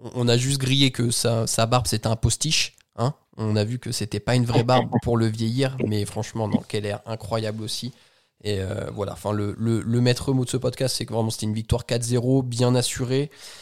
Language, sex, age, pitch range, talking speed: French, male, 20-39, 110-130 Hz, 230 wpm